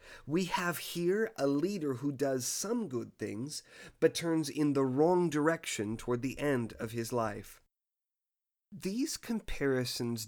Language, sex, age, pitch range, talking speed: English, male, 30-49, 115-150 Hz, 140 wpm